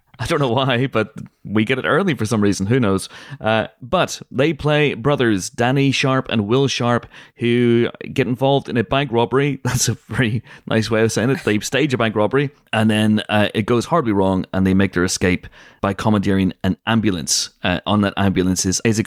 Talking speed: 210 wpm